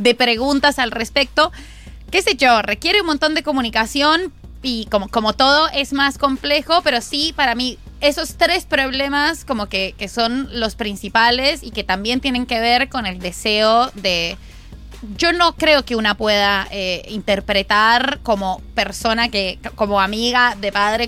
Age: 20-39